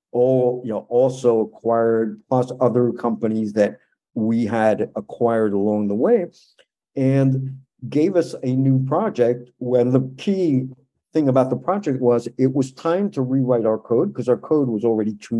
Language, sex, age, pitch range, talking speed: English, male, 50-69, 115-140 Hz, 165 wpm